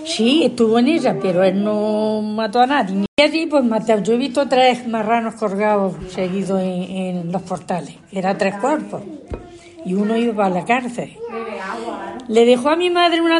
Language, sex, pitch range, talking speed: Spanish, female, 195-255 Hz, 185 wpm